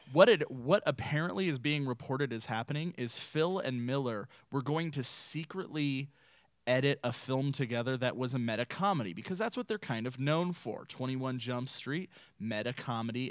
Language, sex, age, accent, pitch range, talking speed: English, male, 20-39, American, 115-140 Hz, 165 wpm